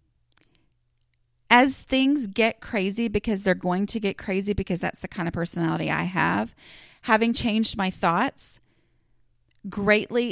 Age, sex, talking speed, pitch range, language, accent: 30-49, female, 135 wpm, 170-225 Hz, English, American